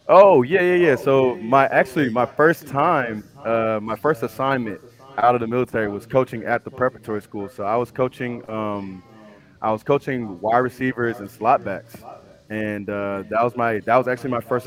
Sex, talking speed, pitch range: male, 190 wpm, 105-120 Hz